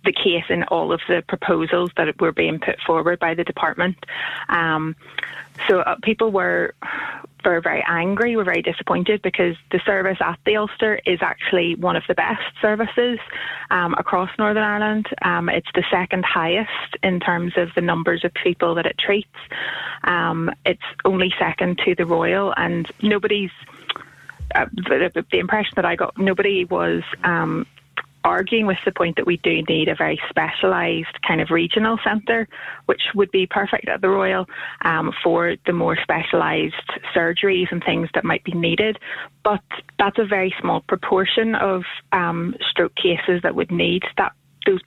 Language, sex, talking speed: English, female, 170 wpm